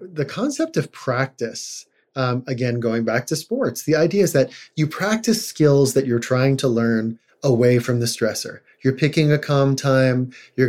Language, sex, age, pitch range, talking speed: English, male, 30-49, 120-145 Hz, 180 wpm